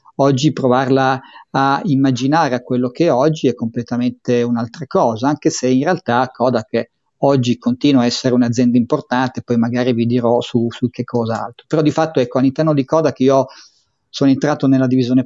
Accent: native